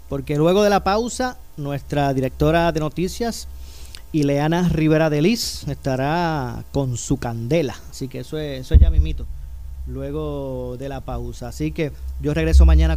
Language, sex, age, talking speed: Spanish, male, 30-49, 160 wpm